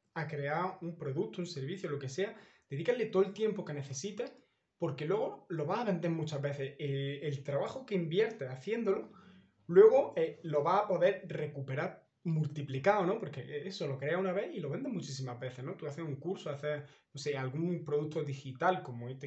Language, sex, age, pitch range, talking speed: Spanish, male, 20-39, 140-185 Hz, 195 wpm